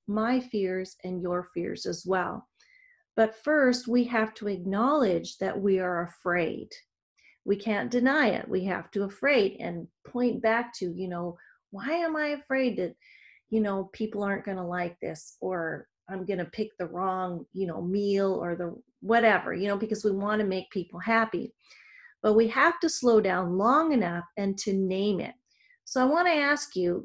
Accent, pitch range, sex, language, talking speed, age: American, 185-240 Hz, female, English, 185 wpm, 40-59